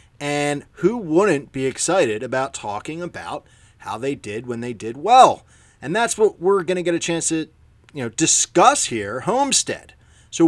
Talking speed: 180 wpm